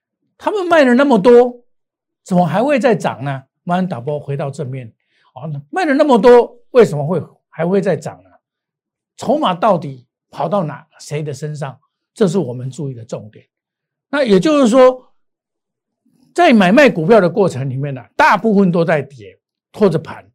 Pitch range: 150-230 Hz